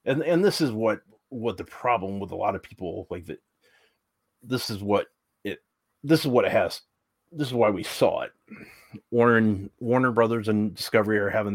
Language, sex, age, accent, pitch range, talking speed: English, male, 30-49, American, 100-120 Hz, 195 wpm